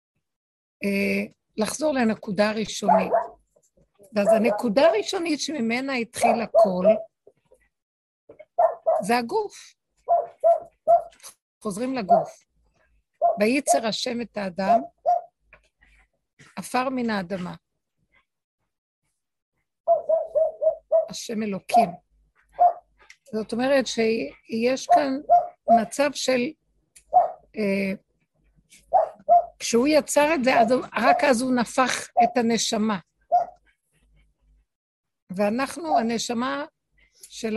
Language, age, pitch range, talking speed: Hebrew, 50-69, 220-310 Hz, 65 wpm